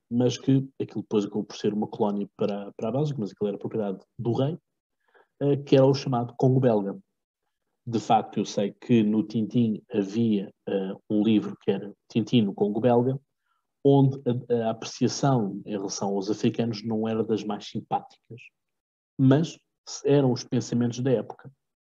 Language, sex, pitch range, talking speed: Portuguese, male, 105-125 Hz, 165 wpm